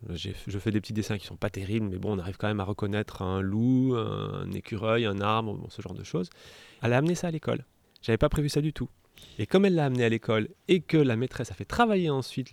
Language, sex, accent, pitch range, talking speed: French, male, French, 110-145 Hz, 280 wpm